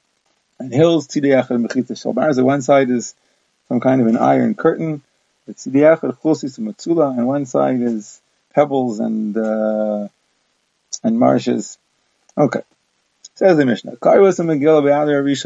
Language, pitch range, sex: English, 130-155 Hz, male